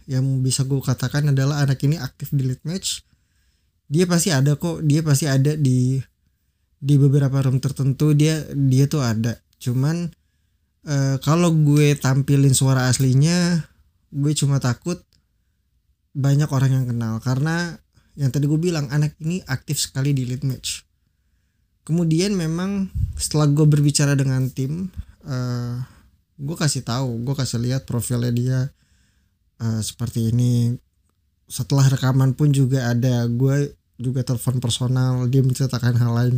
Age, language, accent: 20-39, Indonesian, native